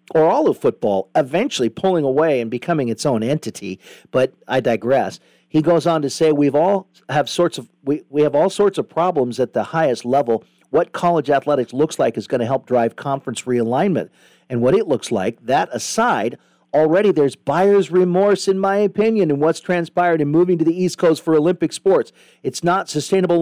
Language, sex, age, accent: English, male, 50-69, American